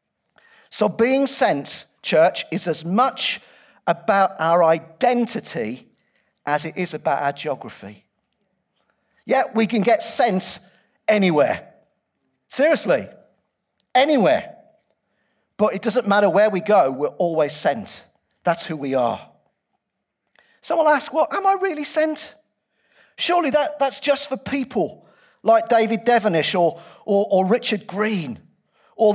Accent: British